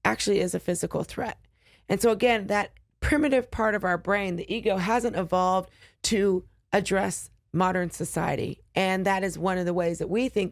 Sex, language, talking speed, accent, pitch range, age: female, English, 185 wpm, American, 170-210 Hz, 40-59